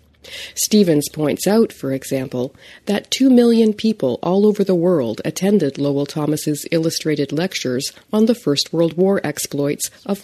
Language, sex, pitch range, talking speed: English, female, 140-185 Hz, 145 wpm